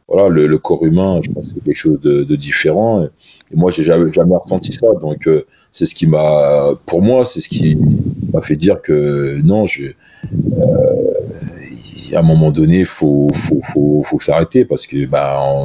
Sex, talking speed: male, 205 wpm